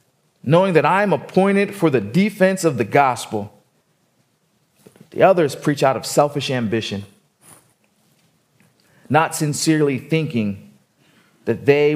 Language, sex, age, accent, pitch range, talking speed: English, male, 30-49, American, 120-190 Hz, 115 wpm